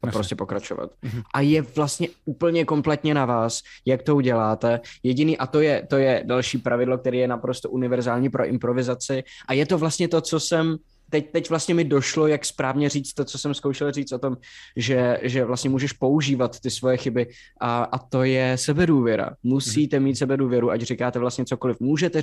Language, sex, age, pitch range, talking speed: Czech, male, 20-39, 120-145 Hz, 185 wpm